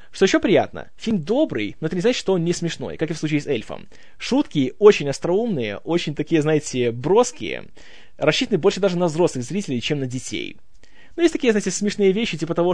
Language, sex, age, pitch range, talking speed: Russian, male, 20-39, 140-190 Hz, 205 wpm